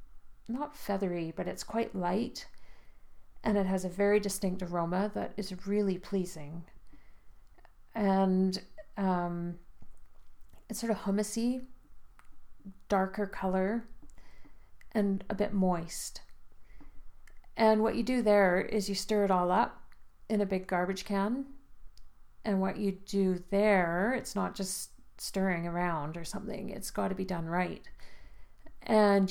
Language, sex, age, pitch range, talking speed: English, female, 40-59, 175-205 Hz, 130 wpm